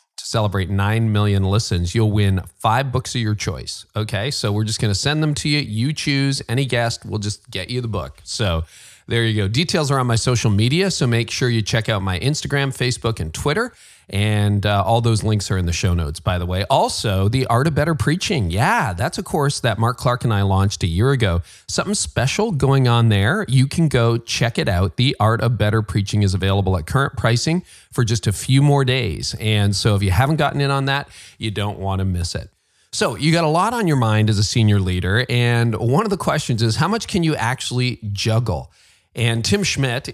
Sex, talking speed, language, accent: male, 230 wpm, English, American